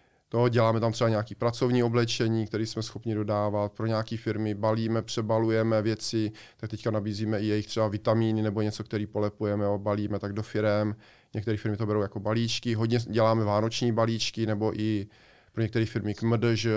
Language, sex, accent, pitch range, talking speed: Czech, male, native, 105-115 Hz, 180 wpm